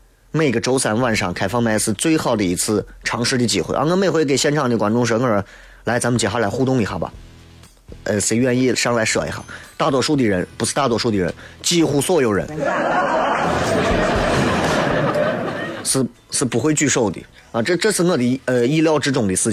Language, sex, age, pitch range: Chinese, male, 30-49, 110-150 Hz